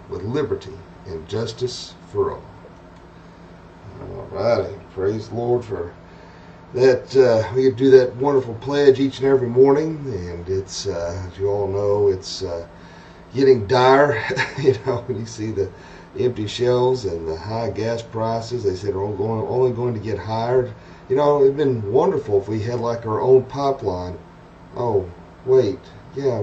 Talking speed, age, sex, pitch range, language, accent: 165 wpm, 40-59, male, 95-125 Hz, English, American